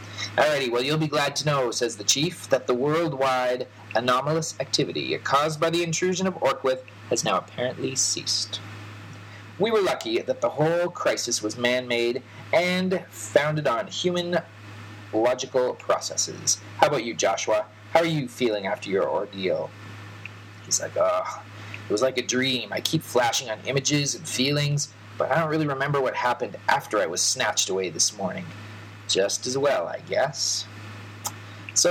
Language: English